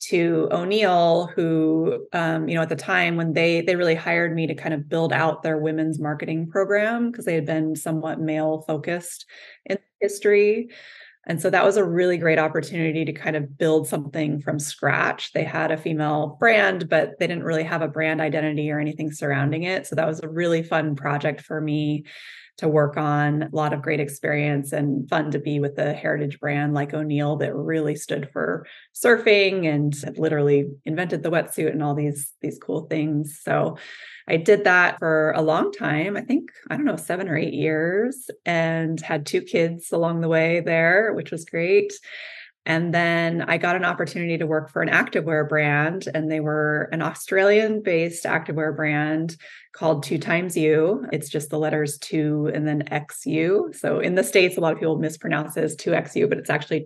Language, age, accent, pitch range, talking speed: English, 20-39, American, 150-170 Hz, 195 wpm